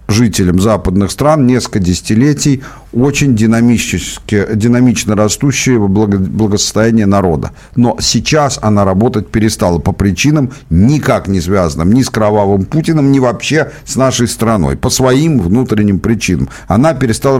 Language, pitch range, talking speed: Russian, 105-135 Hz, 130 wpm